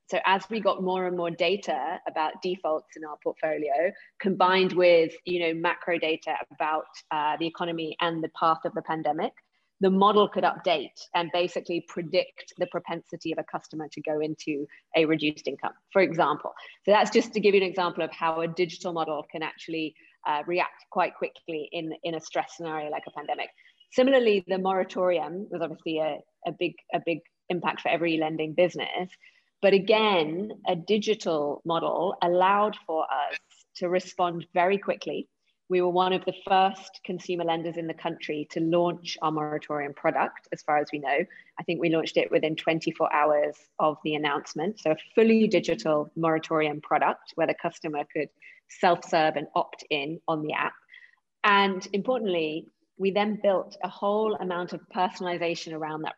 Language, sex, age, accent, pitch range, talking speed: English, female, 30-49, British, 160-190 Hz, 175 wpm